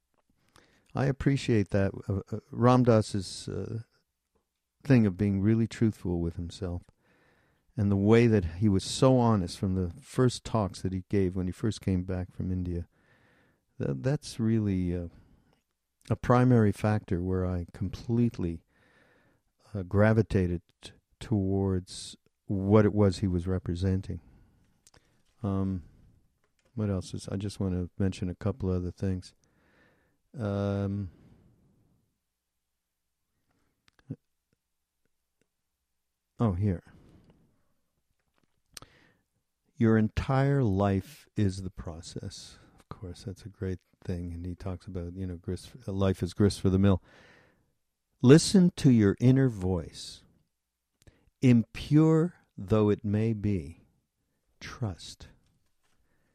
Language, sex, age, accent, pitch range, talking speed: English, male, 50-69, American, 90-110 Hz, 115 wpm